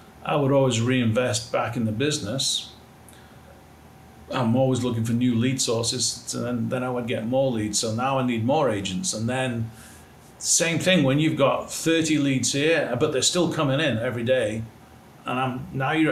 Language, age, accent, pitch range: English, 50-69, British, 115-140 Hz